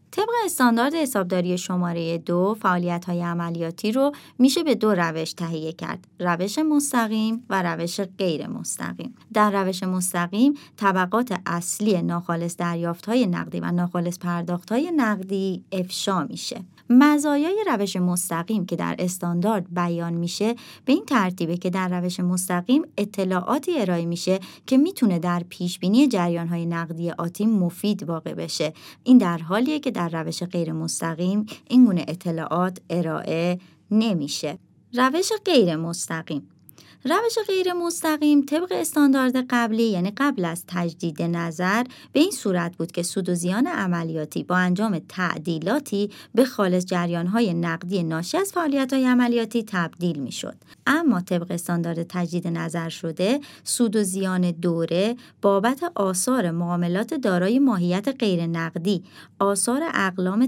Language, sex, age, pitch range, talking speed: Persian, male, 30-49, 175-240 Hz, 130 wpm